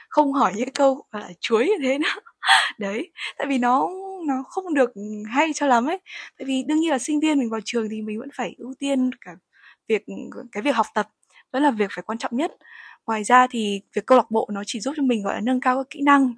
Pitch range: 210-270 Hz